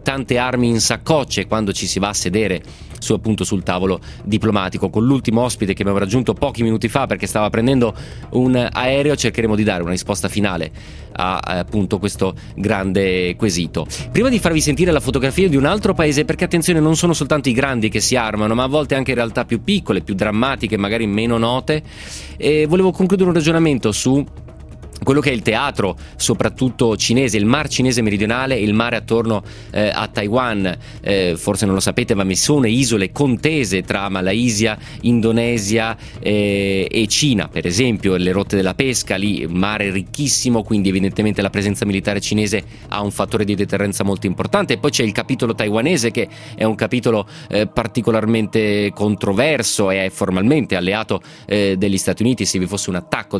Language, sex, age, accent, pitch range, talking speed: Italian, male, 30-49, native, 100-125 Hz, 180 wpm